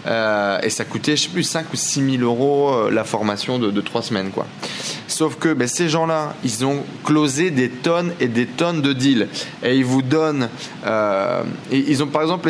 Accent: French